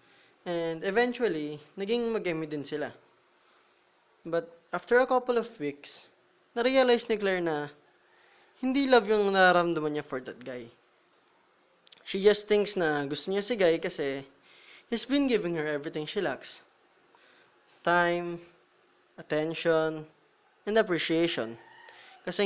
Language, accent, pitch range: Filipino, native, 150-230 Hz